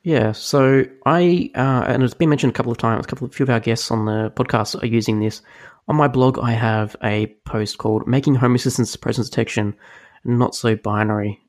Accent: Australian